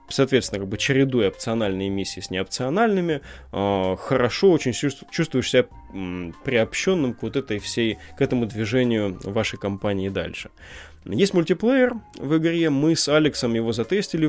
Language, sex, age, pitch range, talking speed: Russian, male, 20-39, 100-135 Hz, 135 wpm